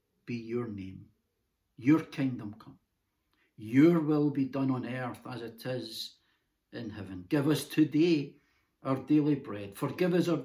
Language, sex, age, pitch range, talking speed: English, male, 60-79, 115-150 Hz, 145 wpm